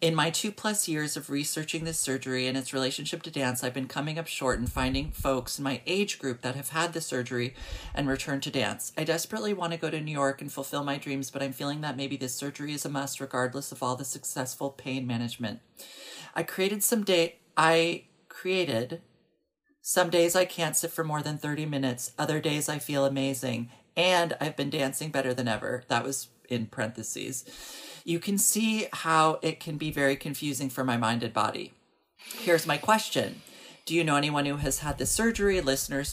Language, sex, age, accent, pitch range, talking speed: English, male, 40-59, American, 130-160 Hz, 200 wpm